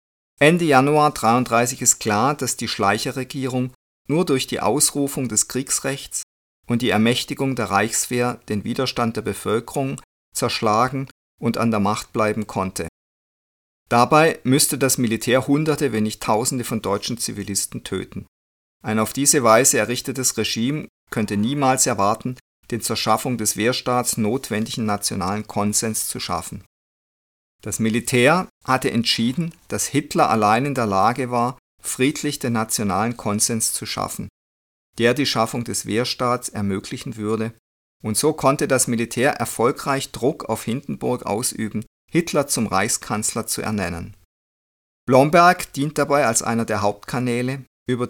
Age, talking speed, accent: 50-69, 135 wpm, German